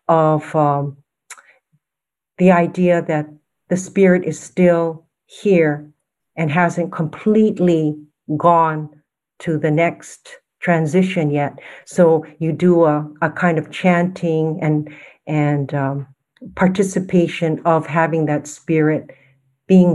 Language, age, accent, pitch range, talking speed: English, 60-79, American, 155-195 Hz, 110 wpm